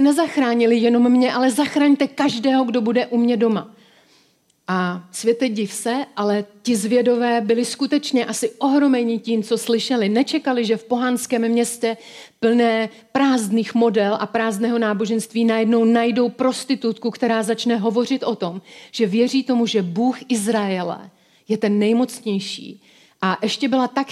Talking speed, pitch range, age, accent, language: 140 wpm, 215-245 Hz, 40-59, native, Czech